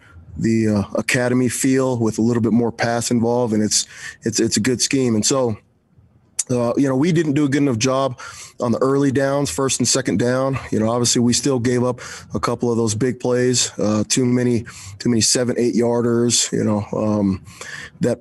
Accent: American